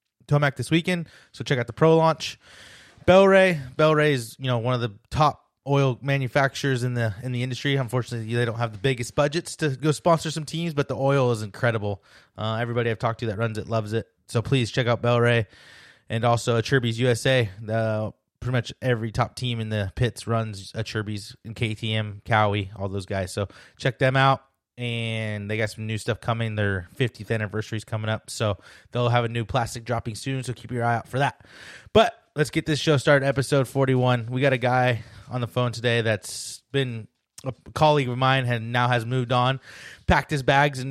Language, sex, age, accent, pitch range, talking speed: English, male, 20-39, American, 115-135 Hz, 215 wpm